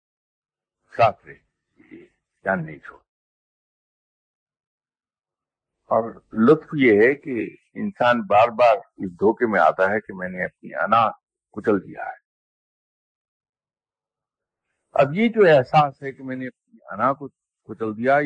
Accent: Indian